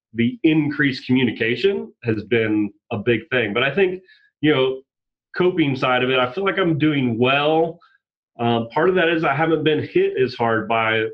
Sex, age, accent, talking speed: male, 30-49, American, 190 wpm